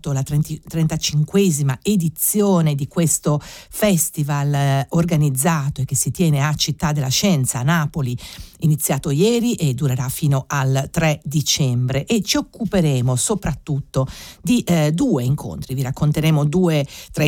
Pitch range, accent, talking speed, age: 140-175 Hz, native, 135 wpm, 50-69